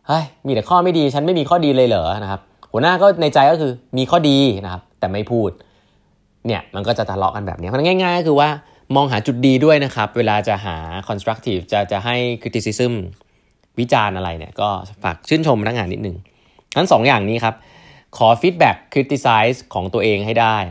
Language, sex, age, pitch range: Thai, male, 20-39, 100-135 Hz